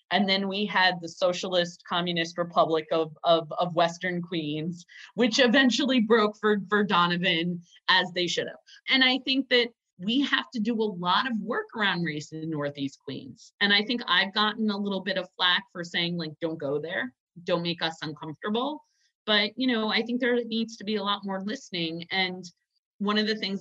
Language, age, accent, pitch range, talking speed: English, 30-49, American, 175-225 Hz, 195 wpm